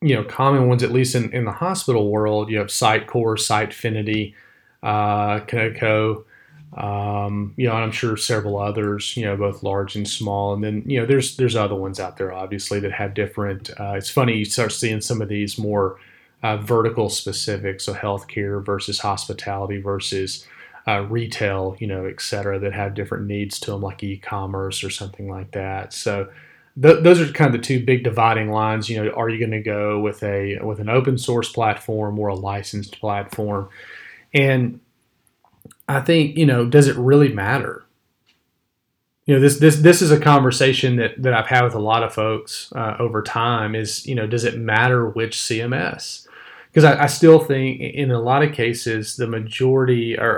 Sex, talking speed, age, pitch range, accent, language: male, 190 wpm, 30-49, 100-125 Hz, American, English